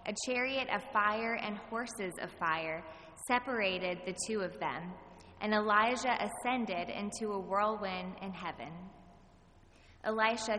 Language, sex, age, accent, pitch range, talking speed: English, female, 20-39, American, 175-230 Hz, 125 wpm